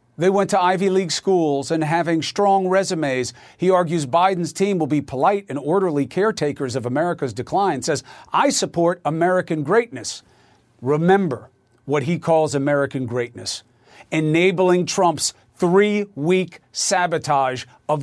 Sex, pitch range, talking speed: male, 140-195 Hz, 130 wpm